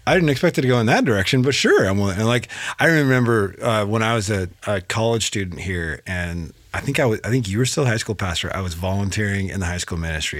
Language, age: English, 30-49